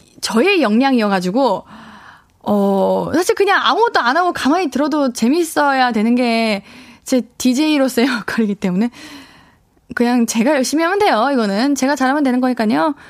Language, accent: Korean, native